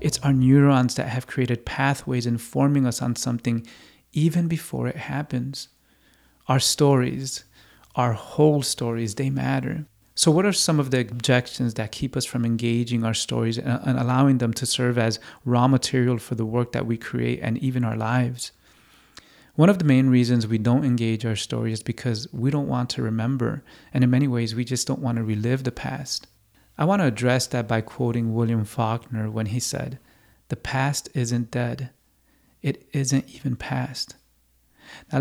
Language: English